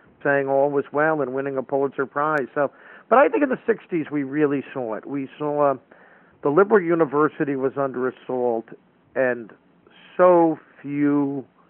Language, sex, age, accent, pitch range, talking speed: English, male, 50-69, American, 125-155 Hz, 165 wpm